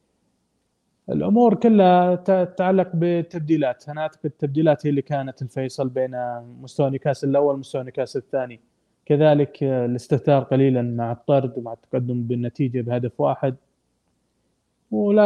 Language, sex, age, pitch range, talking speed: Arabic, male, 20-39, 125-150 Hz, 100 wpm